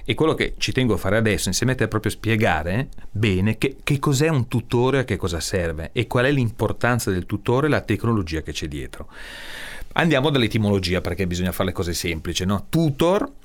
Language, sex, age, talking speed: Italian, male, 40-59, 210 wpm